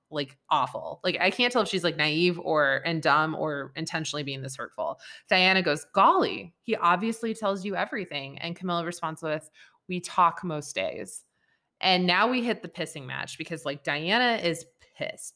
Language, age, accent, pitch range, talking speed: English, 20-39, American, 155-195 Hz, 180 wpm